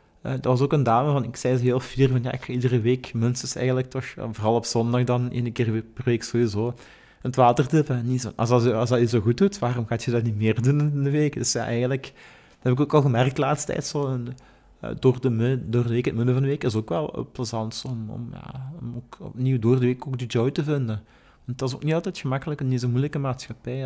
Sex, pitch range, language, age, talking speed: male, 120-145 Hz, Dutch, 30-49, 260 wpm